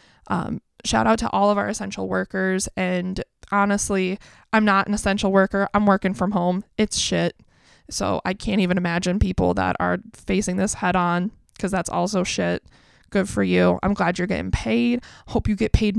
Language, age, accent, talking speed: English, 20-39, American, 190 wpm